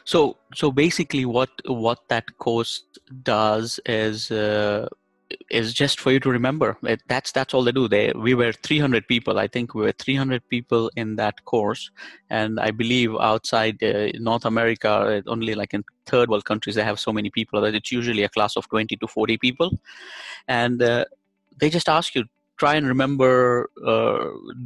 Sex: male